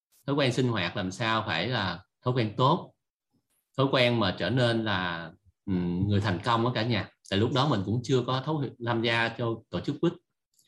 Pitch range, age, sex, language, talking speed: 105-135 Hz, 30-49, male, Vietnamese, 215 wpm